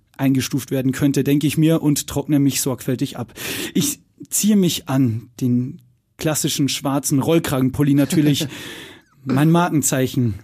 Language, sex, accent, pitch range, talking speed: German, male, German, 130-160 Hz, 125 wpm